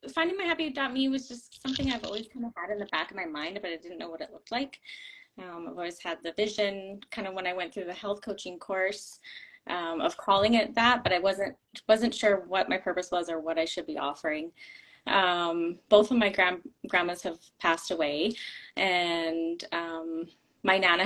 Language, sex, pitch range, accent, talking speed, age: English, female, 185-245 Hz, American, 210 wpm, 20-39